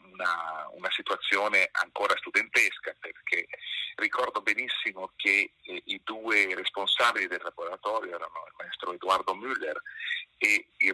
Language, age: Italian, 40-59